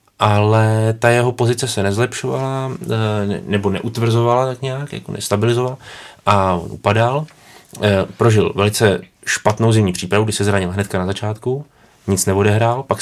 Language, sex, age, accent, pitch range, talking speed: Czech, male, 20-39, native, 100-115 Hz, 135 wpm